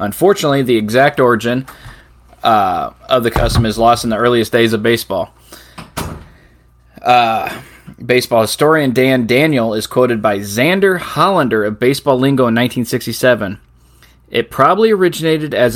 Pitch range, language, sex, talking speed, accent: 110-135 Hz, English, male, 135 wpm, American